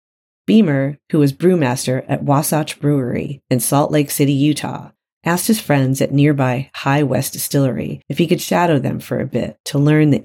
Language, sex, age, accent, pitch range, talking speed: English, female, 40-59, American, 135-155 Hz, 180 wpm